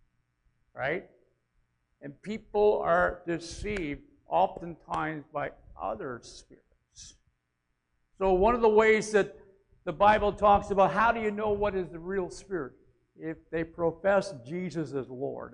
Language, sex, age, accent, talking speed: English, male, 60-79, American, 130 wpm